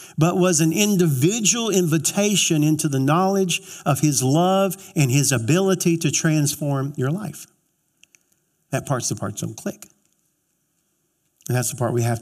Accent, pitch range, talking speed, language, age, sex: American, 140-180 Hz, 150 wpm, English, 50-69, male